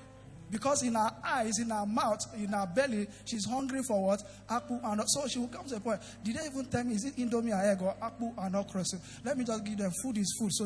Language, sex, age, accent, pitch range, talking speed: English, male, 50-69, Nigerian, 205-270 Hz, 240 wpm